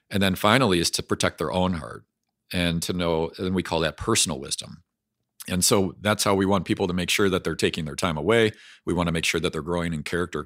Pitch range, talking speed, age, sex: 85-120 Hz, 245 wpm, 40-59, male